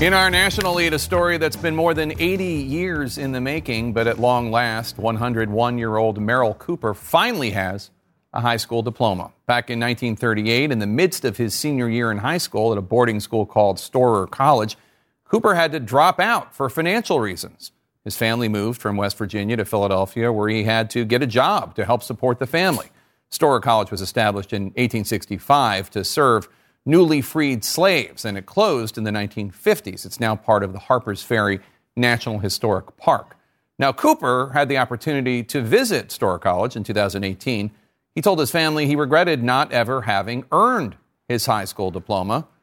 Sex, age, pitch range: male, 40-59, 105-135 Hz